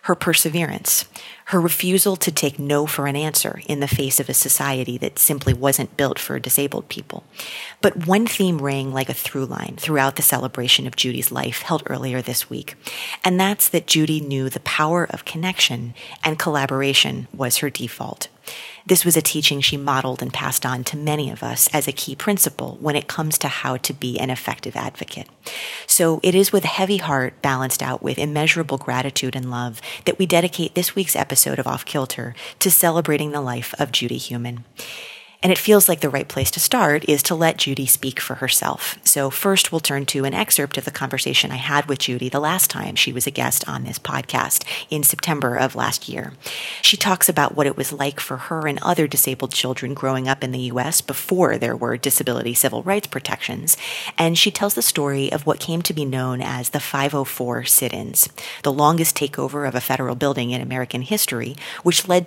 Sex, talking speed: female, 200 wpm